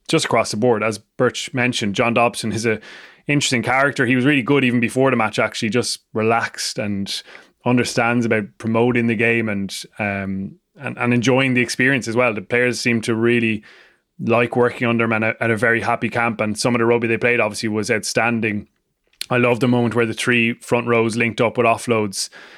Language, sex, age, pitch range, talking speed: English, male, 20-39, 115-125 Hz, 200 wpm